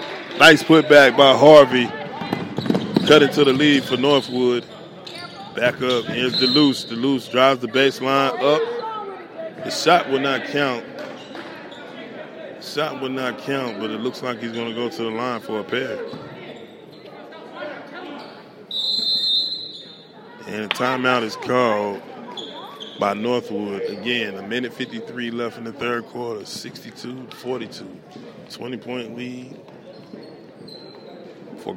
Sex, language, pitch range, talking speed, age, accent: male, English, 115-135 Hz, 125 wpm, 20-39, American